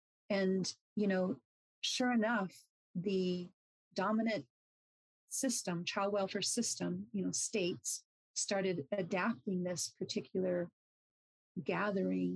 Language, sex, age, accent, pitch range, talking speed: English, female, 40-59, American, 180-210 Hz, 90 wpm